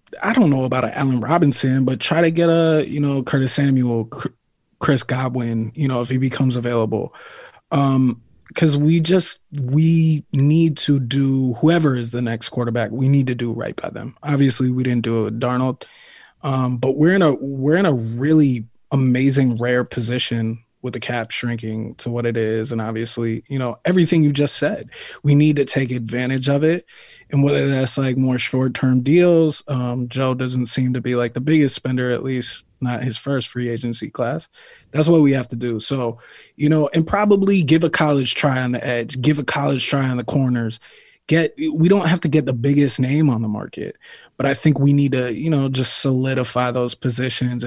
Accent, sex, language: American, male, English